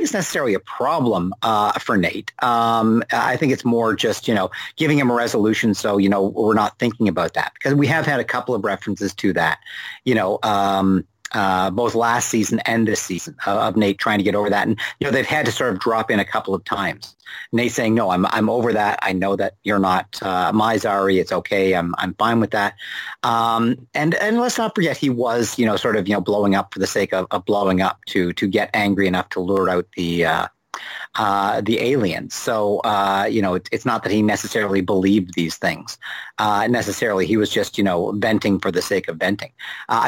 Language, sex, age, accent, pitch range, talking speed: English, male, 50-69, American, 100-120 Hz, 230 wpm